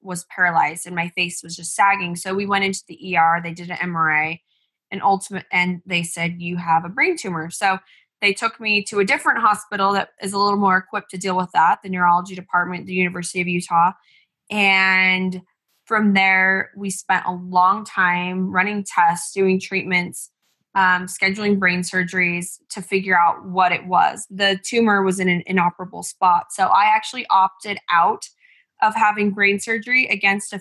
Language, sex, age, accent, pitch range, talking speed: English, female, 20-39, American, 180-205 Hz, 180 wpm